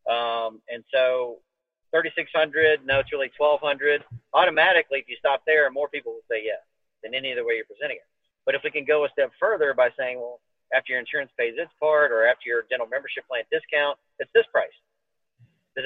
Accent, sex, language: American, male, English